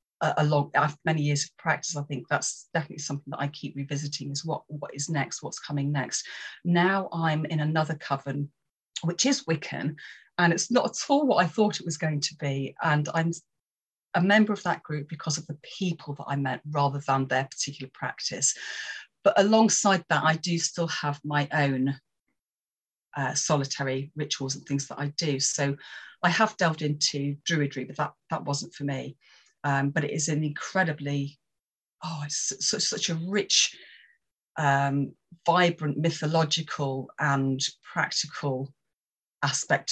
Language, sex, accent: English, female, British